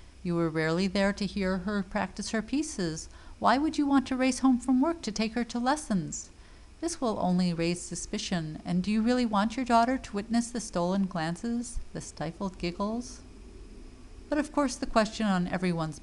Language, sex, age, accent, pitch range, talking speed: English, female, 50-69, American, 165-230 Hz, 190 wpm